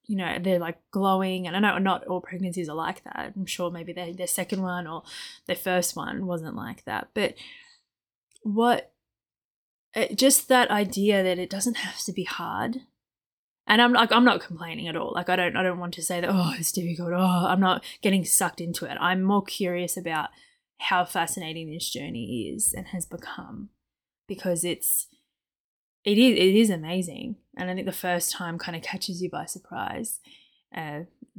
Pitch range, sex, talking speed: 175-210 Hz, female, 190 wpm